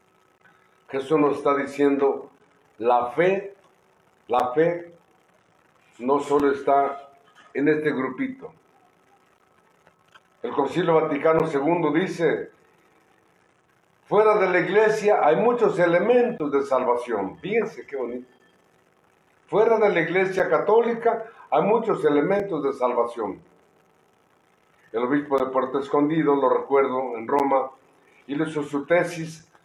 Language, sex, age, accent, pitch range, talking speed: Spanish, male, 50-69, Mexican, 140-210 Hz, 110 wpm